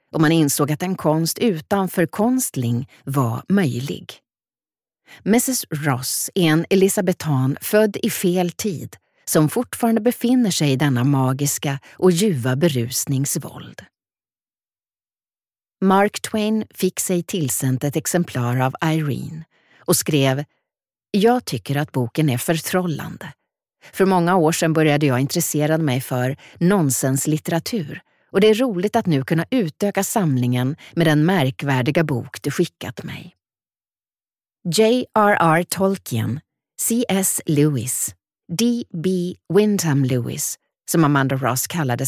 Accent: native